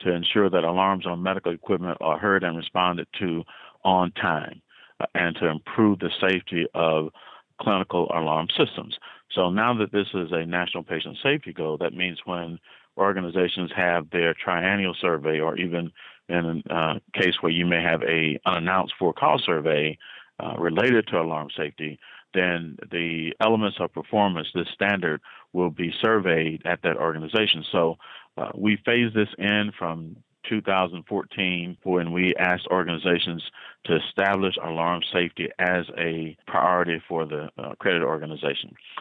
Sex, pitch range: male, 85-95 Hz